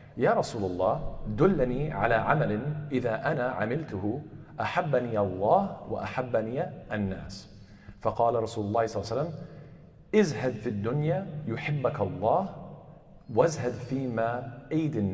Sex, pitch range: male, 105-135 Hz